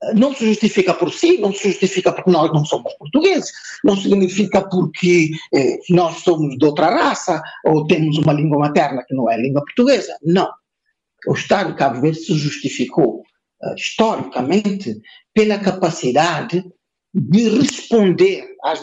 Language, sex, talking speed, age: Portuguese, male, 145 wpm, 50-69